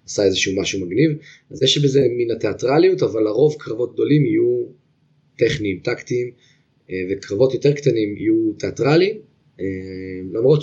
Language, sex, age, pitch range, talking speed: Hebrew, male, 20-39, 105-140 Hz, 125 wpm